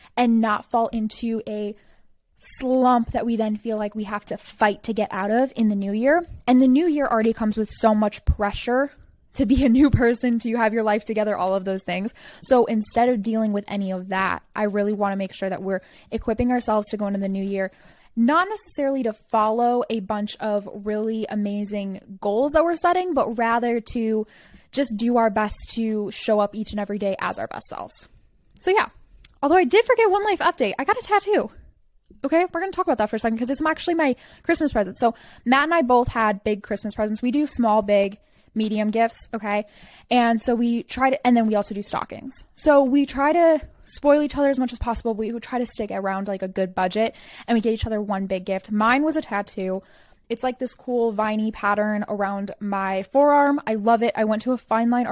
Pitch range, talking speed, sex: 210-255 Hz, 225 wpm, female